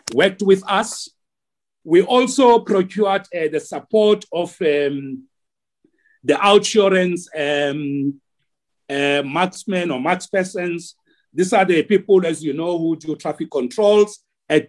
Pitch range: 155-205 Hz